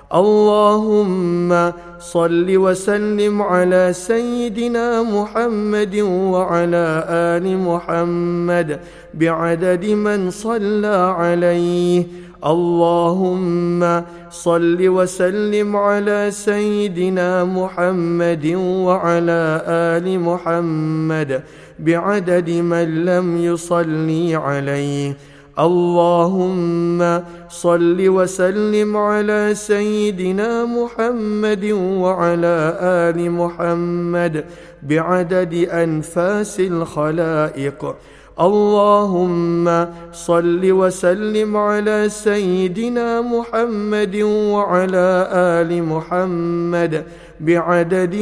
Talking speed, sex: 60 wpm, male